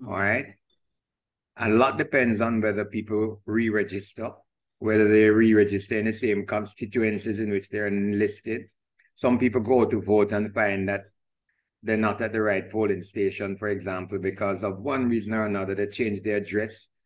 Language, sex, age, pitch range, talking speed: English, male, 50-69, 100-110 Hz, 165 wpm